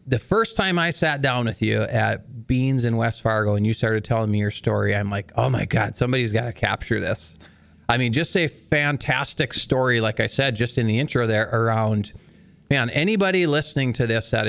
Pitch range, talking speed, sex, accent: 110-145 Hz, 215 wpm, male, American